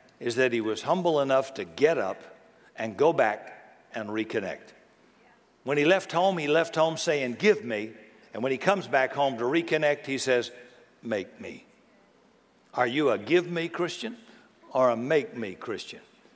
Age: 60-79